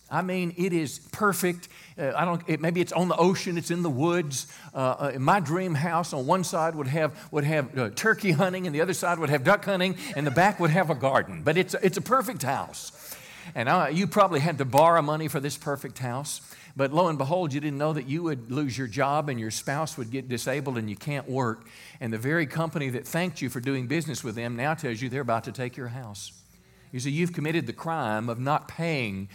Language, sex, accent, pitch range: English, male, American, 135-175 Hz